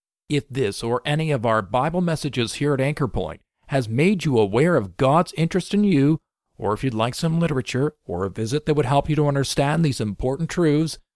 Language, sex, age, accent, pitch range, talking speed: English, male, 50-69, American, 110-145 Hz, 210 wpm